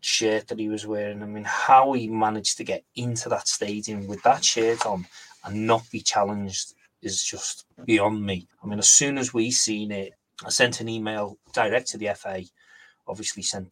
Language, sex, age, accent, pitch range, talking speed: English, male, 30-49, British, 100-115 Hz, 195 wpm